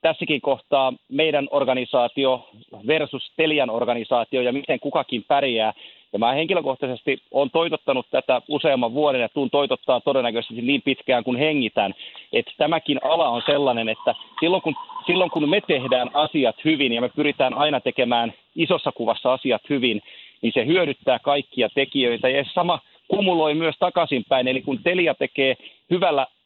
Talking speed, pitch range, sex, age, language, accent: 145 wpm, 125-160 Hz, male, 40-59, Finnish, native